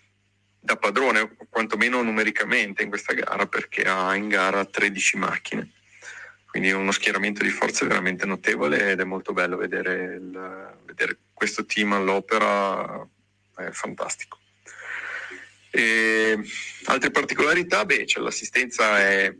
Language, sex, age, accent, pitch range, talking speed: Italian, male, 30-49, native, 100-115 Hz, 125 wpm